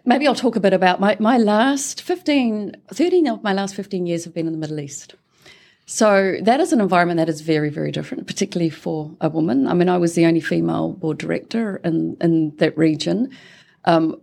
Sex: female